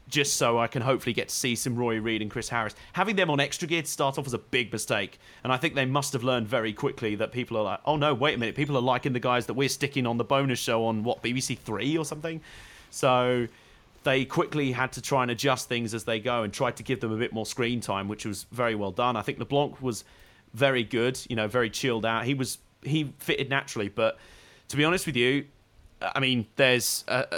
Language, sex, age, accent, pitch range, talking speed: English, male, 30-49, British, 115-140 Hz, 250 wpm